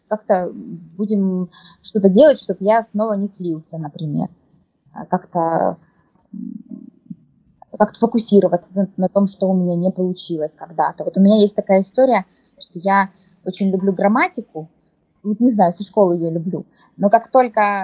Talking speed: 145 wpm